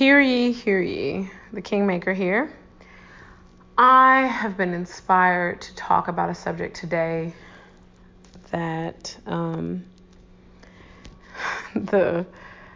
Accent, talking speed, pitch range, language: American, 95 wpm, 175-220 Hz, English